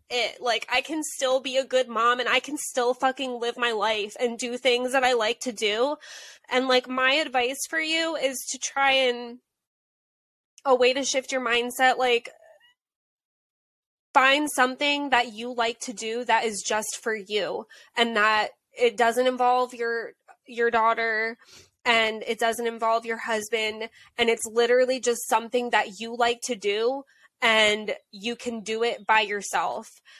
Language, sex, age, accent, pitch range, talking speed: English, female, 20-39, American, 220-255 Hz, 170 wpm